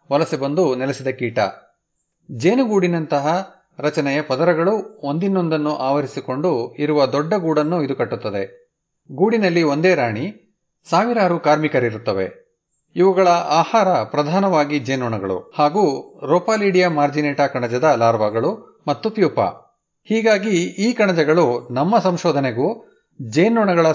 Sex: male